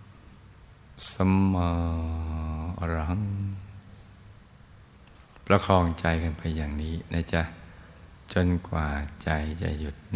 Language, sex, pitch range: Thai, male, 80-95 Hz